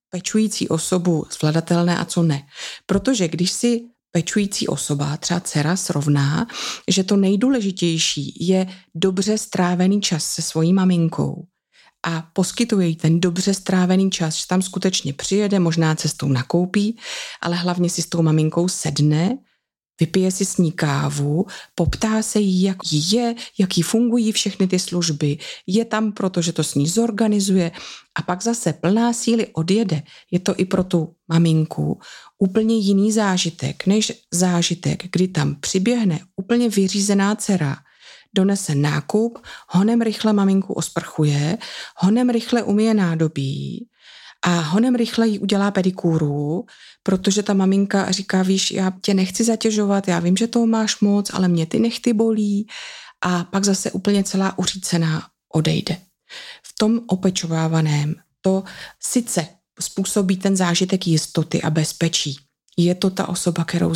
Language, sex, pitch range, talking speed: Czech, female, 170-205 Hz, 140 wpm